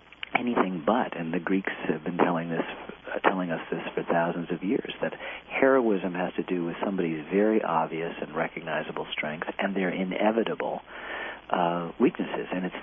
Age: 50-69